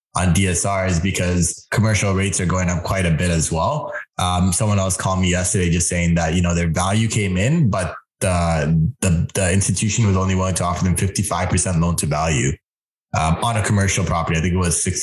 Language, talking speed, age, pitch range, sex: English, 215 wpm, 20-39, 90-110 Hz, male